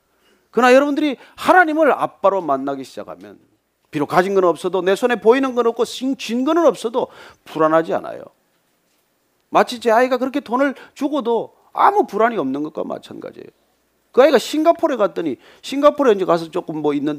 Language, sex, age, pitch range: Korean, male, 40-59, 185-310 Hz